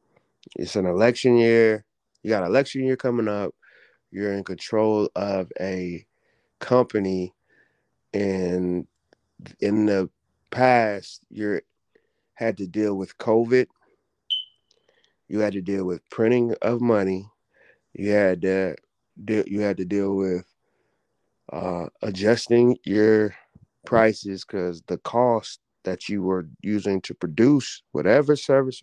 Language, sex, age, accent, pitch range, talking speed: English, male, 30-49, American, 90-115 Hz, 115 wpm